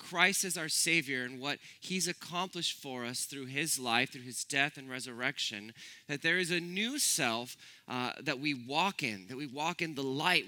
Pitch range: 135-185 Hz